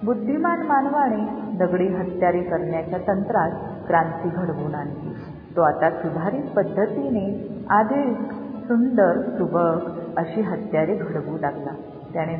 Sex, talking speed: female, 100 wpm